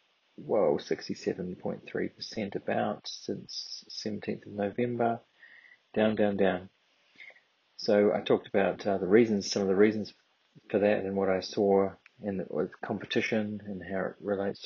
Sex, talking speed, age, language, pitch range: male, 145 wpm, 30-49, English, 100-110 Hz